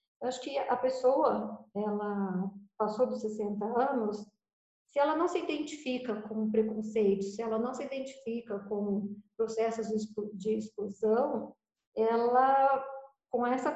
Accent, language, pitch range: Brazilian, Portuguese, 210-255 Hz